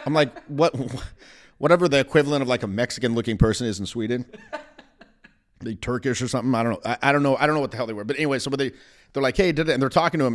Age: 30-49